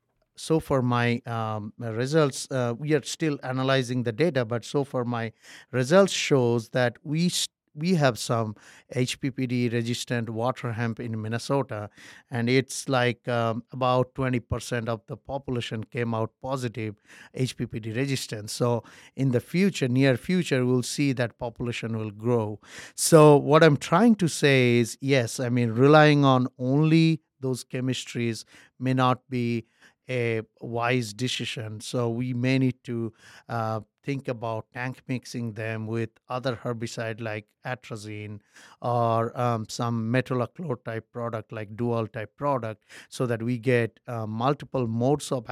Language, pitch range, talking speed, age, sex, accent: English, 115-130 Hz, 145 wpm, 50-69, male, Indian